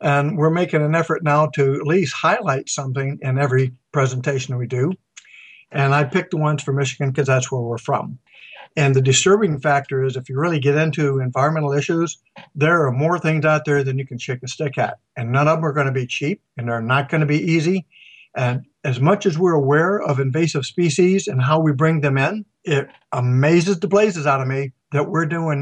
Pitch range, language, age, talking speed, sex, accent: 135-160 Hz, English, 60-79, 225 wpm, male, American